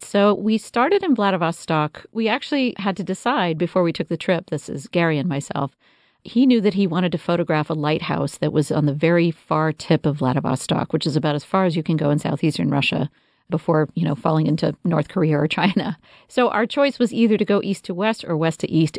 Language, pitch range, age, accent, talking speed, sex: English, 150-175 Hz, 40-59, American, 230 wpm, female